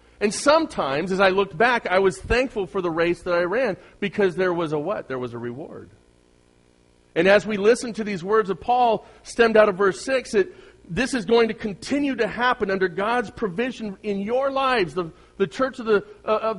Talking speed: 200 wpm